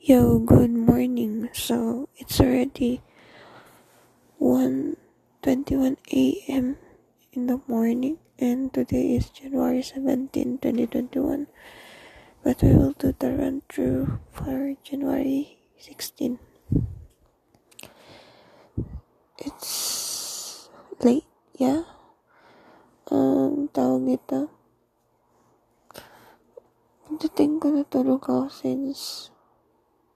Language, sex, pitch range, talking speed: Filipino, female, 245-285 Hz, 85 wpm